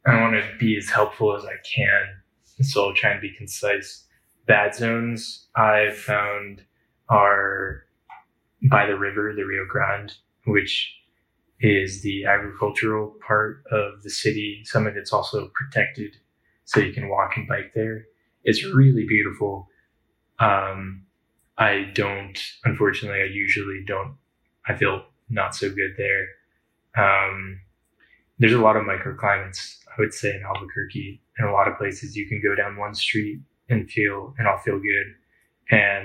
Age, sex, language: 20-39, male, English